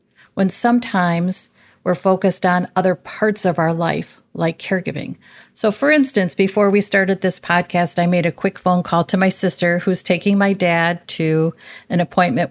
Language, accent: English, American